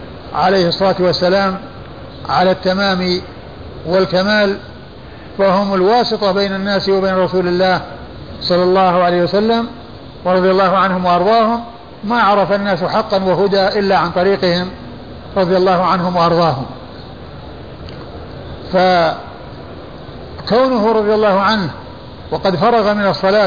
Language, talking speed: Arabic, 105 wpm